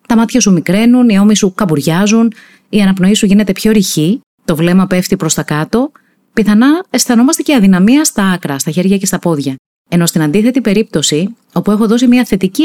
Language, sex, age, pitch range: Greek, female, 30-49, 165-230 Hz